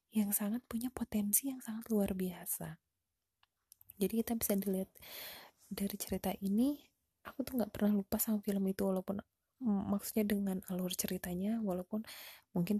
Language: Indonesian